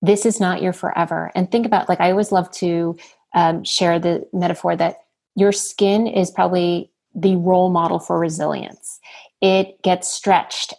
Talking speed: 165 wpm